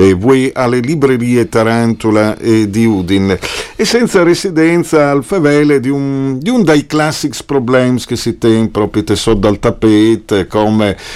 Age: 50-69